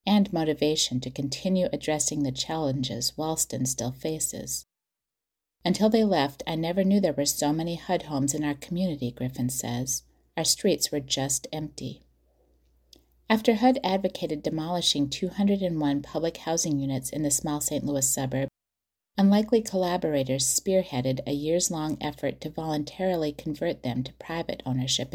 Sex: female